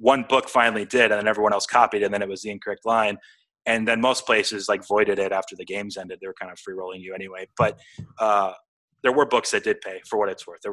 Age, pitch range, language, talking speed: 30-49, 100-125 Hz, English, 270 wpm